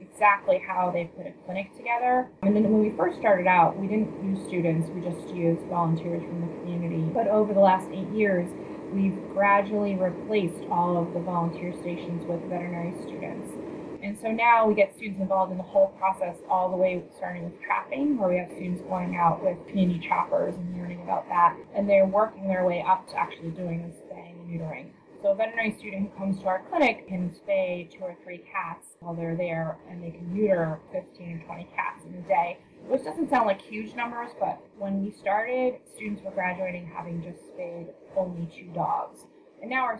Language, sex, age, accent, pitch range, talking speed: English, female, 20-39, American, 170-200 Hz, 205 wpm